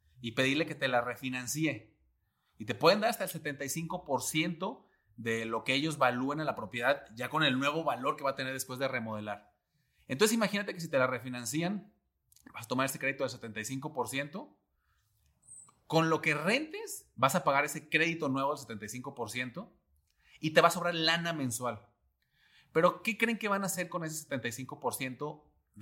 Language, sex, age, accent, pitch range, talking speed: English, male, 30-49, Mexican, 120-160 Hz, 175 wpm